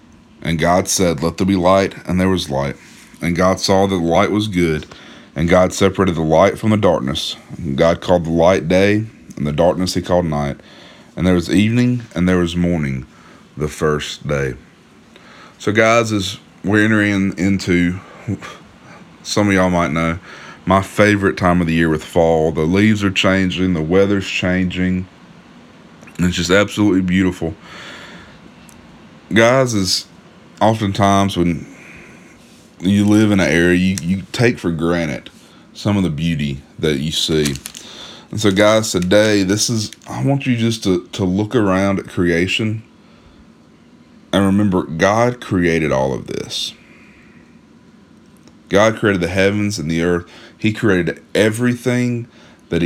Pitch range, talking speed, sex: 85-105 Hz, 155 wpm, male